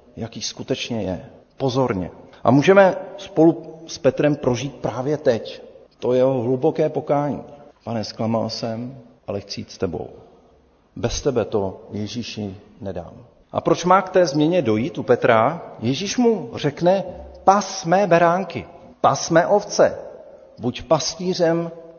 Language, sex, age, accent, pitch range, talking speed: Czech, male, 50-69, native, 120-160 Hz, 130 wpm